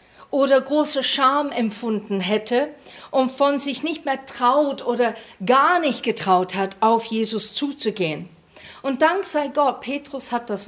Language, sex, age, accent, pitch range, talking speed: German, female, 50-69, German, 195-270 Hz, 145 wpm